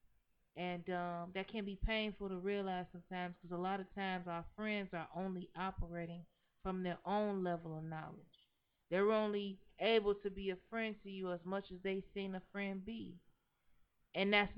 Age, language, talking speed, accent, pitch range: 30-49, English, 180 wpm, American, 180-200 Hz